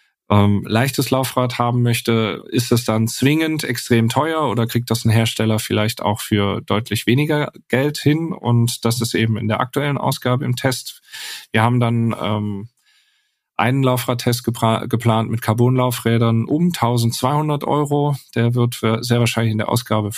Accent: German